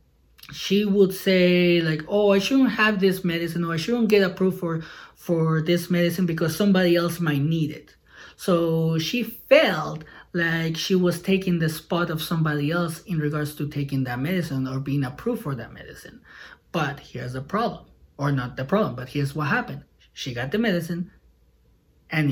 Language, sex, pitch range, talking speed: English, male, 150-185 Hz, 175 wpm